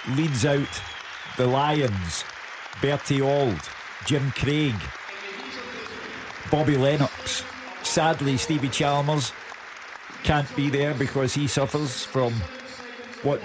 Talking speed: 95 wpm